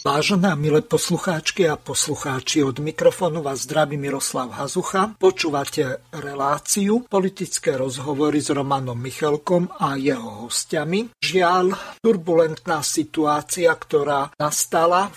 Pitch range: 150-185 Hz